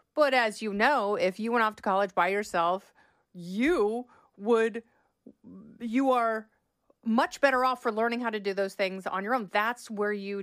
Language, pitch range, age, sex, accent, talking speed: English, 205-250 Hz, 30-49, female, American, 185 wpm